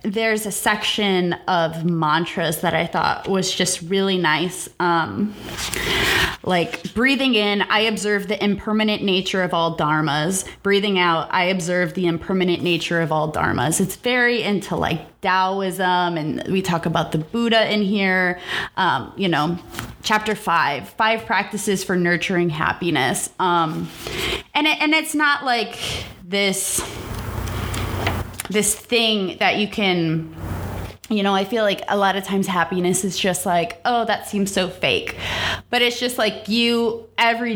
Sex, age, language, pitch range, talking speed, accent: female, 20-39, English, 175-220 Hz, 150 wpm, American